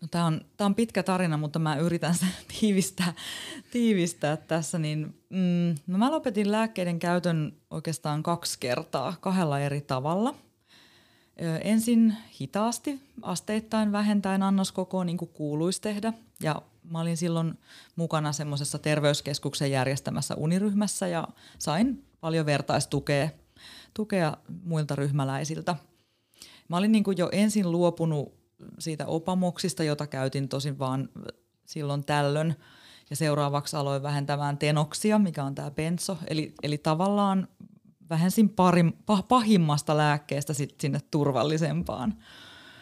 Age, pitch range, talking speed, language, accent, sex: 20-39, 145-185 Hz, 120 wpm, Finnish, native, female